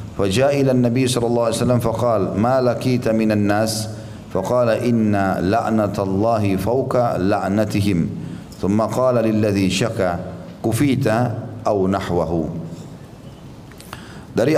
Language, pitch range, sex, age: Indonesian, 95-115 Hz, male, 40-59